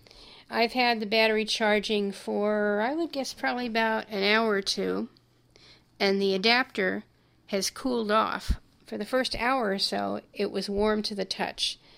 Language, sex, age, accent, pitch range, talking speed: English, female, 50-69, American, 185-225 Hz, 165 wpm